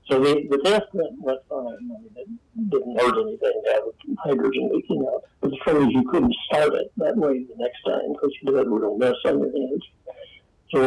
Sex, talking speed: male, 260 wpm